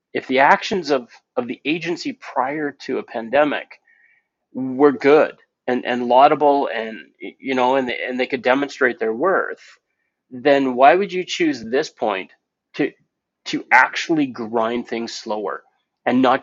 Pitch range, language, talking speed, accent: 125-180 Hz, English, 150 wpm, American